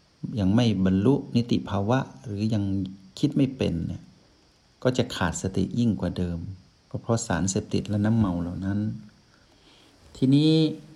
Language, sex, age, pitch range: Thai, male, 60-79, 95-120 Hz